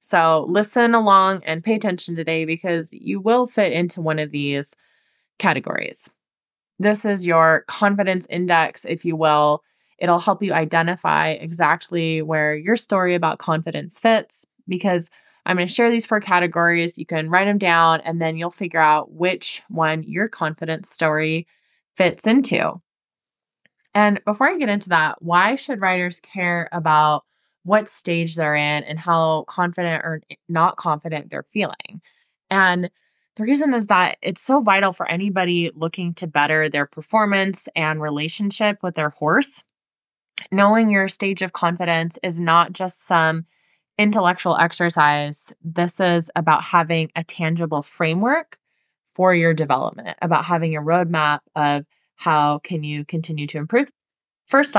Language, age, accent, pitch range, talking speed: English, 20-39, American, 160-195 Hz, 150 wpm